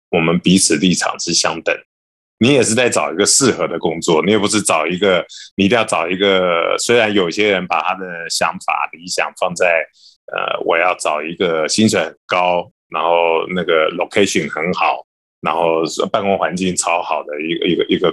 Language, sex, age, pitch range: Chinese, male, 20-39, 85-110 Hz